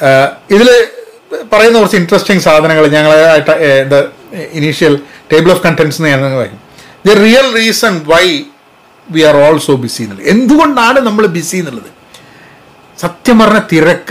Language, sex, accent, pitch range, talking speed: Malayalam, male, native, 150-225 Hz, 125 wpm